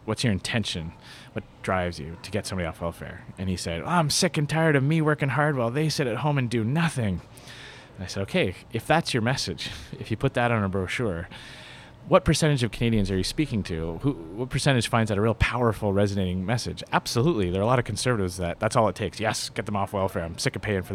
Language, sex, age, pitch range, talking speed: English, male, 30-49, 100-130 Hz, 245 wpm